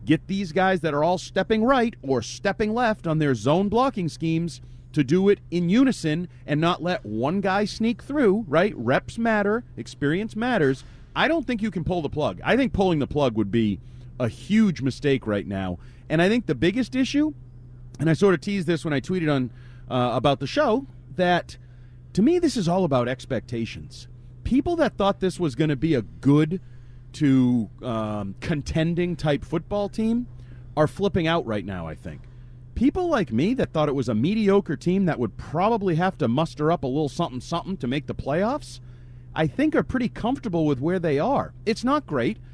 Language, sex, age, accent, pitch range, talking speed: English, male, 30-49, American, 125-195 Hz, 200 wpm